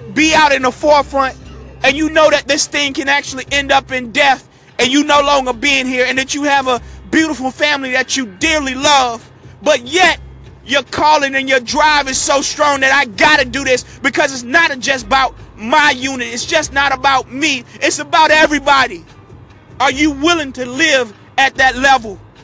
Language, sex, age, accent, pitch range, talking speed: English, male, 30-49, American, 260-295 Hz, 195 wpm